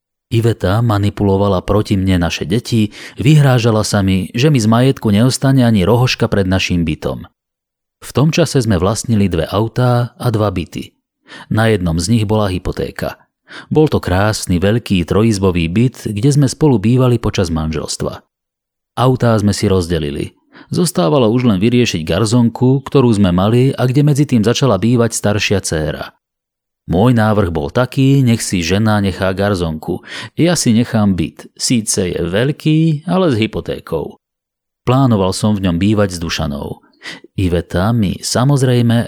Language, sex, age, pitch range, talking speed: Slovak, male, 30-49, 95-125 Hz, 145 wpm